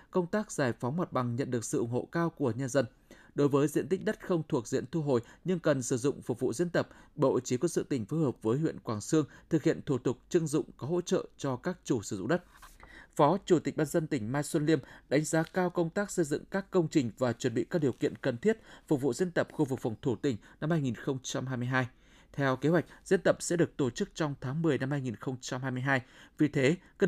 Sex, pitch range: male, 130-170 Hz